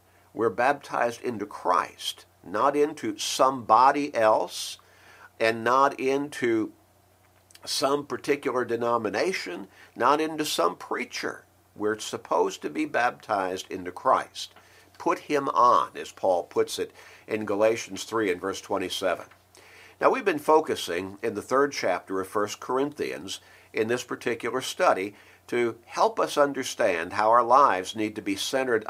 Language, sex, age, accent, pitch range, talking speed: English, male, 50-69, American, 105-155 Hz, 135 wpm